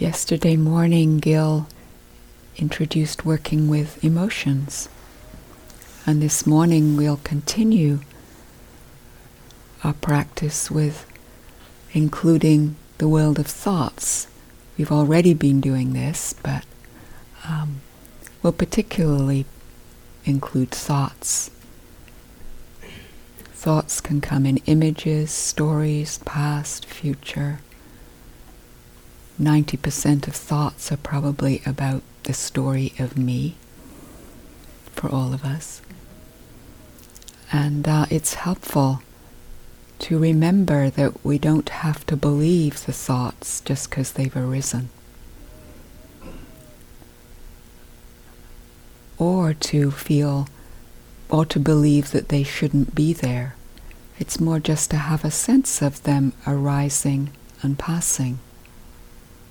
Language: English